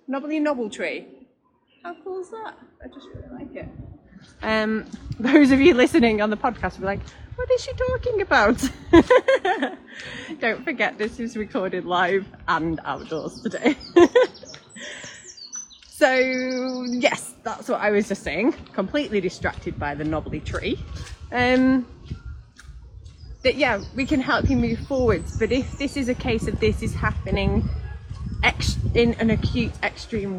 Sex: female